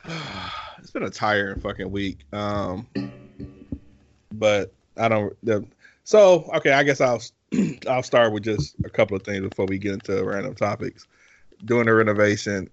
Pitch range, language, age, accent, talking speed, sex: 105-135 Hz, English, 20-39, American, 150 wpm, male